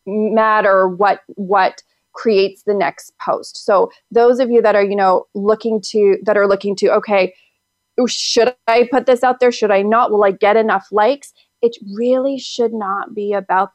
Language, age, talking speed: English, 30-49, 185 wpm